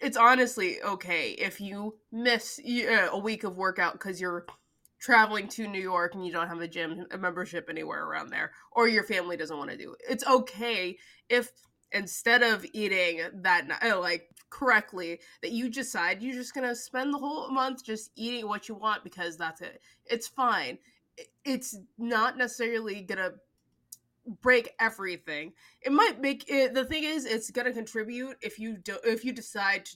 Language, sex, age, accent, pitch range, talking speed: English, female, 20-39, American, 185-250 Hz, 180 wpm